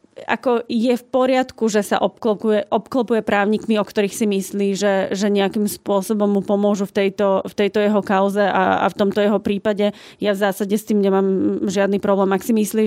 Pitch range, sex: 200-225 Hz, female